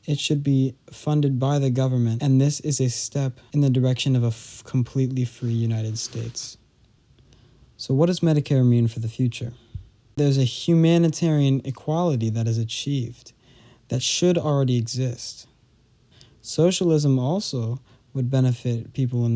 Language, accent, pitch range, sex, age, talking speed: English, American, 120-135 Hz, male, 20-39, 145 wpm